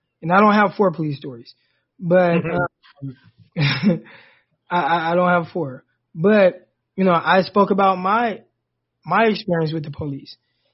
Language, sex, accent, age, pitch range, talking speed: English, male, American, 20-39, 155-200 Hz, 145 wpm